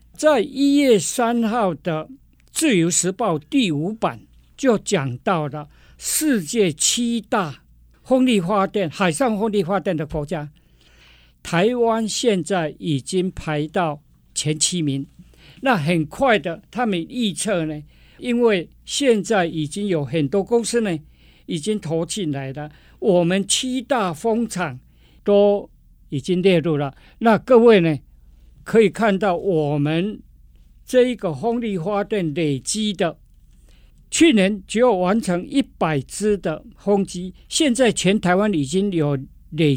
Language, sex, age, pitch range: Chinese, male, 50-69, 155-220 Hz